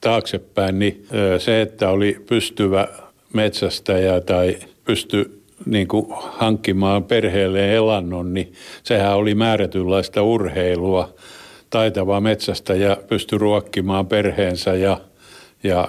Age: 60-79